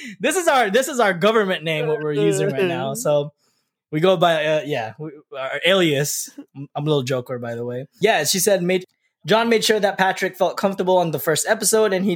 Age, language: 20-39, English